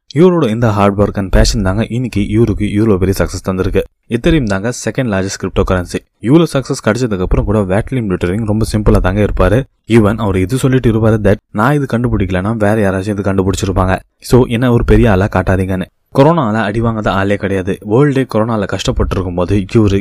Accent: native